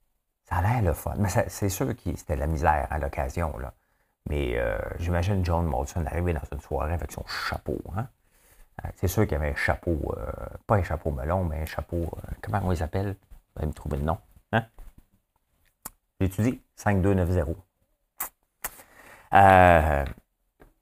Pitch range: 80-100 Hz